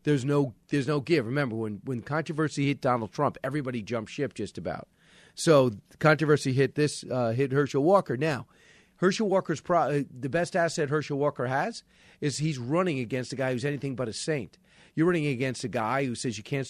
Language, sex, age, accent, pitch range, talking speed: English, male, 40-59, American, 130-165 Hz, 200 wpm